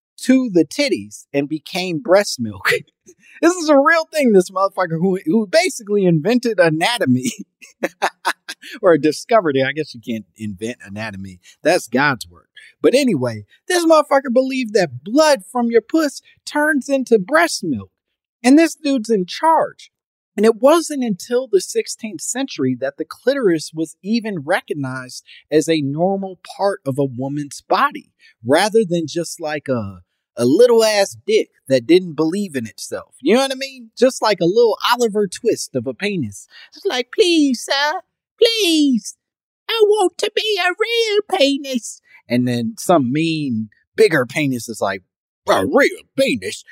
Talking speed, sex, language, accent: 155 wpm, male, English, American